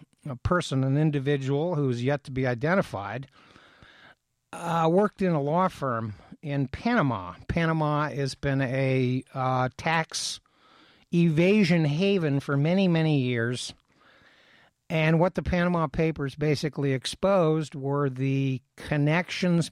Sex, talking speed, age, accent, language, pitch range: male, 120 wpm, 60-79, American, English, 130-170 Hz